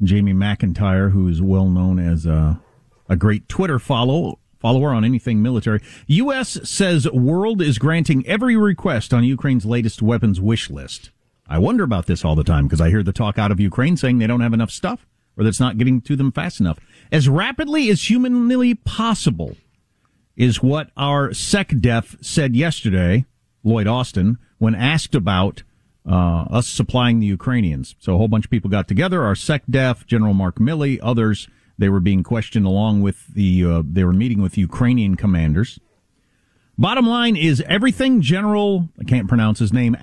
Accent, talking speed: American, 175 wpm